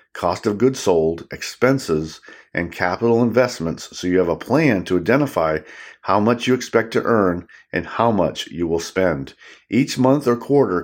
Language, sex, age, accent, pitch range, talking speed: English, male, 50-69, American, 90-125 Hz, 170 wpm